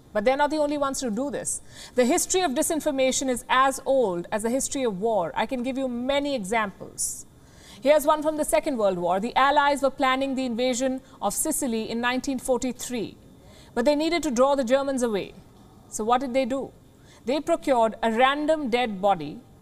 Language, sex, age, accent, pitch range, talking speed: English, female, 50-69, Indian, 235-290 Hz, 195 wpm